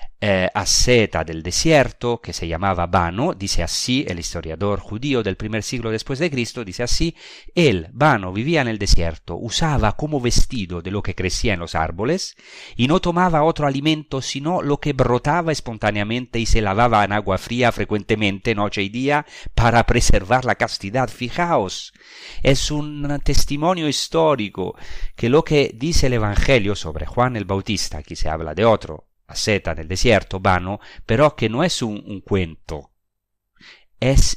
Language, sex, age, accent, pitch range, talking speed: Spanish, male, 40-59, Italian, 95-135 Hz, 160 wpm